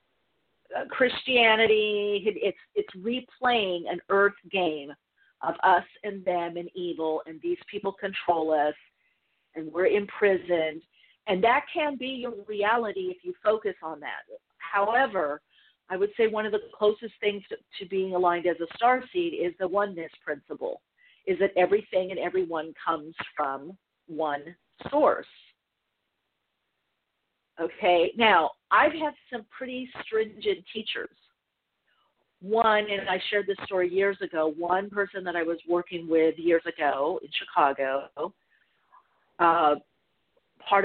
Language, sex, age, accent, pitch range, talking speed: English, female, 50-69, American, 170-240 Hz, 130 wpm